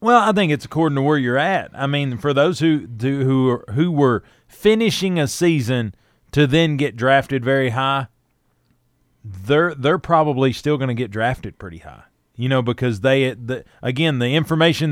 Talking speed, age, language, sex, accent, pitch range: 185 wpm, 30-49, English, male, American, 125-150 Hz